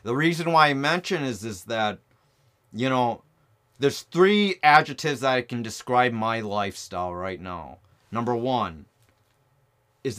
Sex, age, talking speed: male, 30-49, 140 wpm